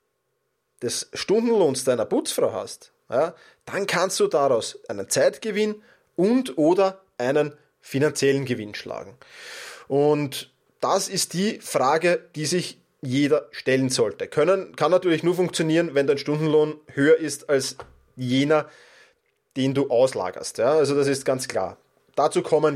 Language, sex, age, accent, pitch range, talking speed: German, male, 20-39, German, 145-235 Hz, 125 wpm